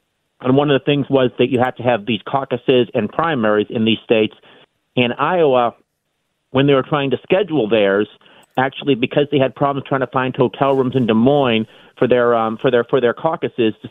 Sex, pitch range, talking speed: male, 125-150 Hz, 210 wpm